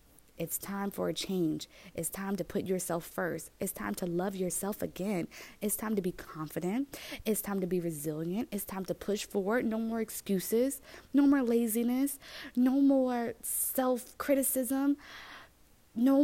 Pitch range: 185-245 Hz